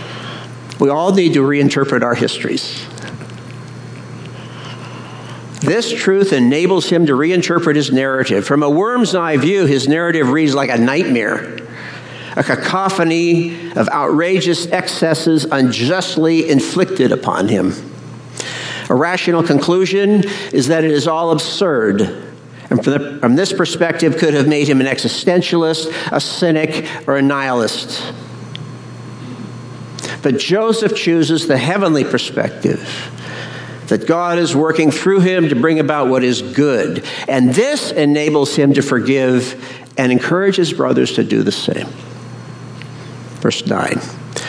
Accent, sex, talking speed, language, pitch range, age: American, male, 125 wpm, English, 140-180 Hz, 60-79